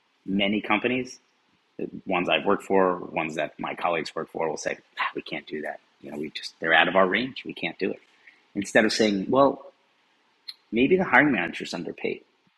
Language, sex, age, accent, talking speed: English, male, 30-49, American, 205 wpm